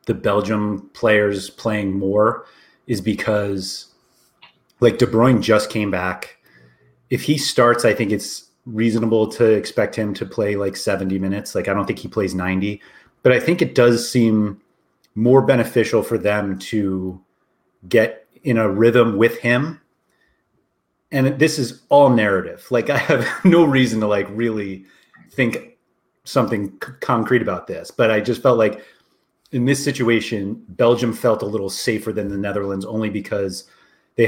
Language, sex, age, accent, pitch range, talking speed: English, male, 30-49, American, 100-125 Hz, 155 wpm